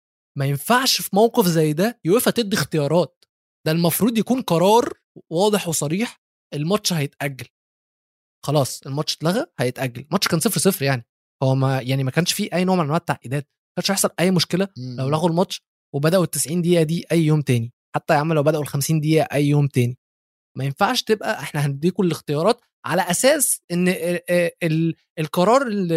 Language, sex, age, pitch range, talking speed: Arabic, male, 20-39, 145-185 Hz, 170 wpm